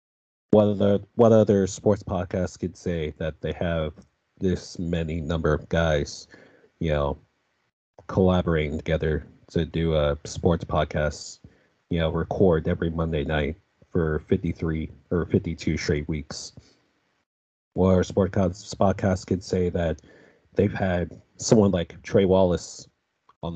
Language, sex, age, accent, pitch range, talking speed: English, male, 30-49, American, 80-95 Hz, 130 wpm